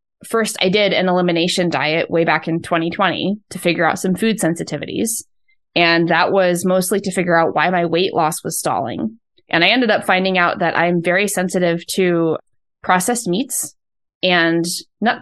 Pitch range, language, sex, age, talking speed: 170-200 Hz, English, female, 20-39, 175 wpm